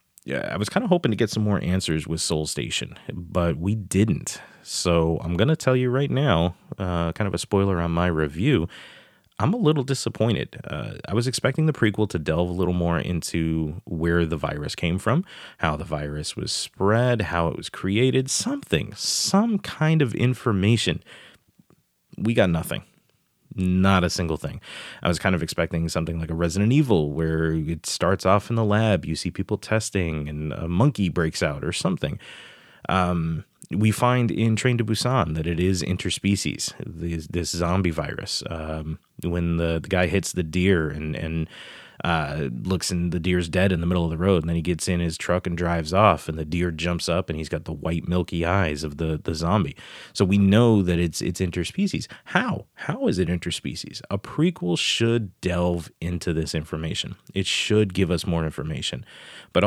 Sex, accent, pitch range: male, American, 85-105 Hz